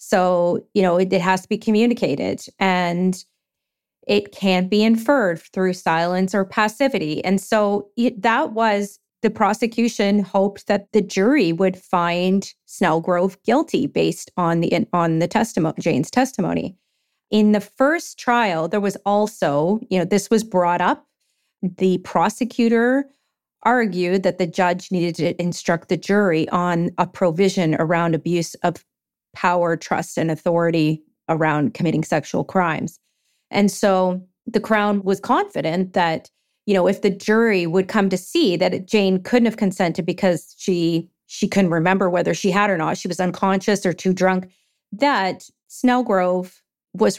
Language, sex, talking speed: English, female, 150 wpm